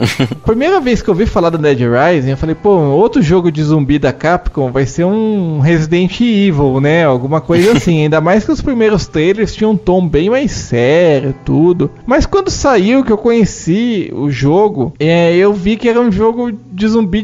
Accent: Brazilian